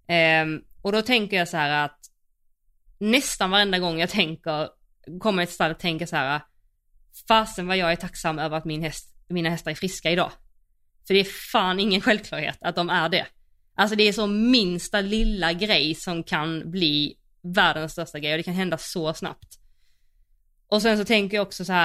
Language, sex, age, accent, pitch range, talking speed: Swedish, female, 20-39, native, 165-215 Hz, 190 wpm